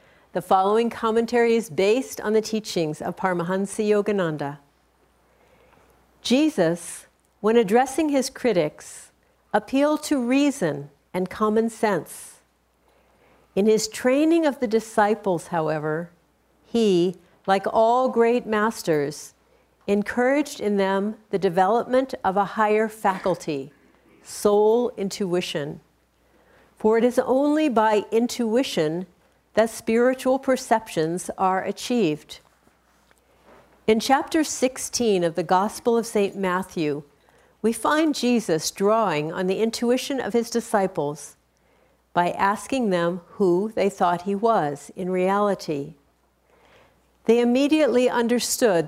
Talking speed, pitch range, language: 110 wpm, 175-230 Hz, English